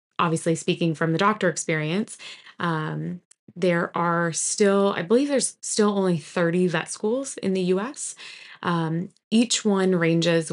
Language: English